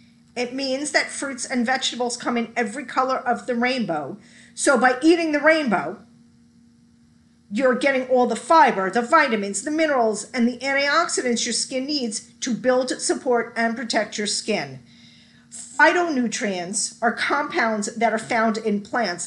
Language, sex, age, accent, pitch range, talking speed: English, female, 40-59, American, 220-280 Hz, 150 wpm